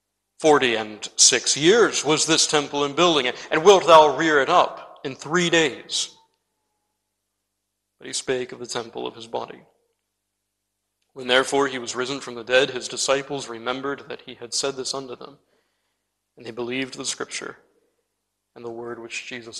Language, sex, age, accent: English, male, 40-59, American